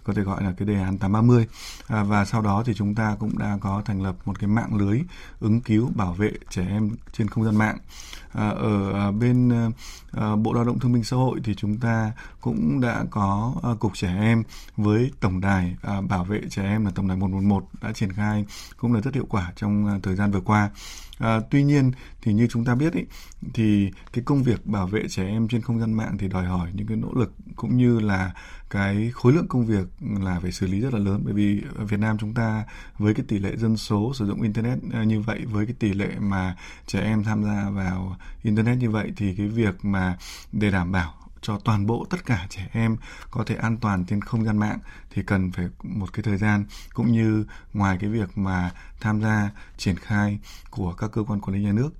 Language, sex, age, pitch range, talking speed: Vietnamese, male, 20-39, 100-110 Hz, 230 wpm